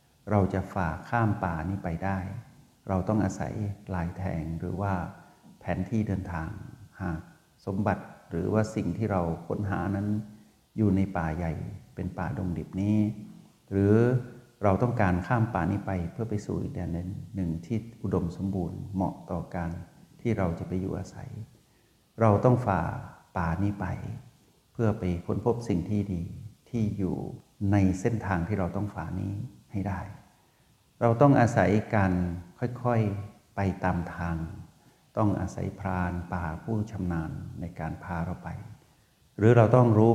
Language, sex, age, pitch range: Thai, male, 60-79, 90-110 Hz